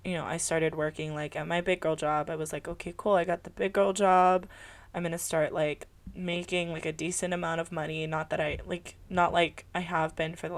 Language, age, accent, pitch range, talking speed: English, 20-39, American, 155-175 Hz, 250 wpm